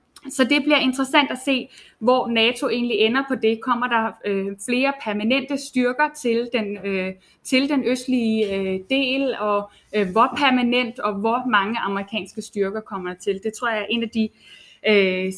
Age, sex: 20-39, female